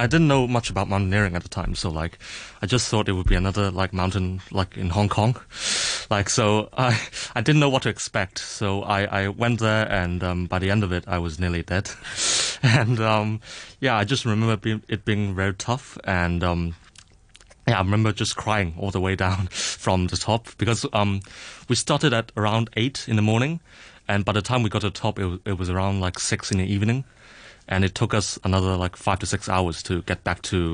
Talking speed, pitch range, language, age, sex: 225 wpm, 95-110 Hz, English, 30-49, male